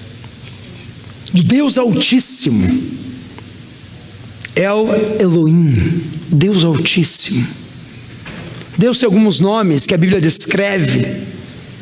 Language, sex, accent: Portuguese, male, Brazilian